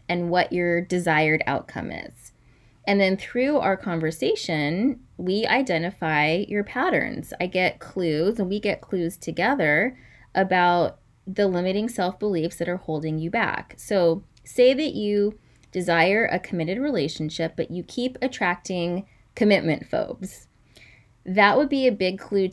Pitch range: 165-215 Hz